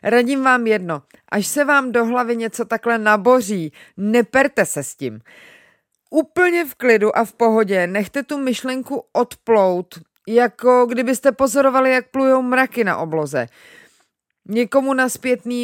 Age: 30-49